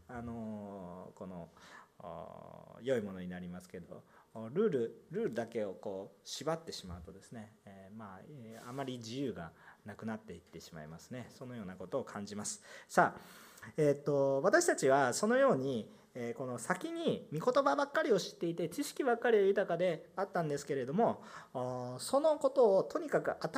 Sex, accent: male, native